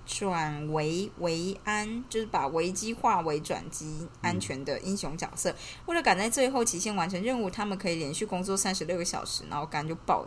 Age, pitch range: 20-39, 165-215 Hz